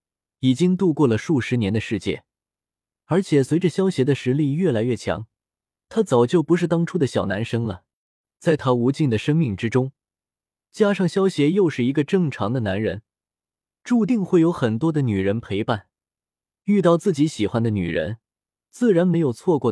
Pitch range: 110-170 Hz